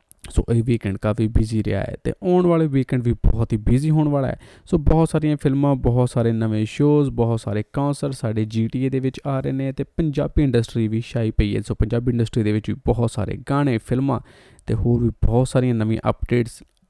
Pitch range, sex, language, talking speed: 110-140 Hz, male, Punjabi, 215 wpm